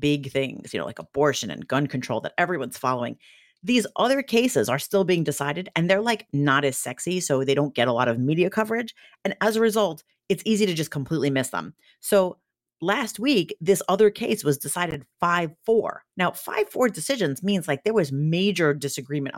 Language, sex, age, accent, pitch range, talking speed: English, female, 40-59, American, 140-195 Hz, 200 wpm